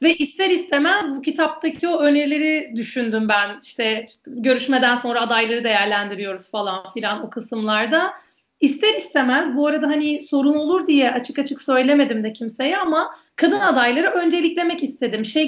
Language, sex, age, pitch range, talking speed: Turkish, female, 40-59, 220-300 Hz, 145 wpm